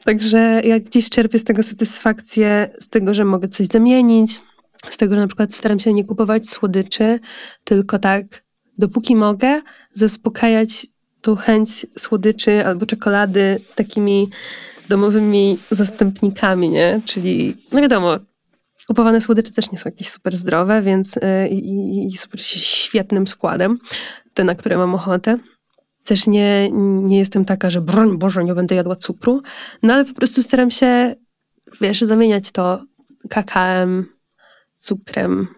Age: 20-39